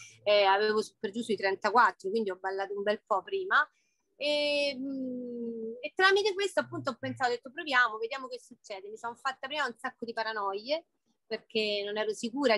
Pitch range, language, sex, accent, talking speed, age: 215-255 Hz, Italian, female, native, 180 wpm, 30-49